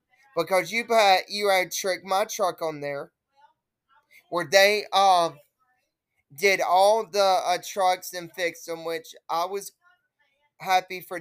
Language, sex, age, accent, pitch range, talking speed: English, male, 20-39, American, 165-245 Hz, 140 wpm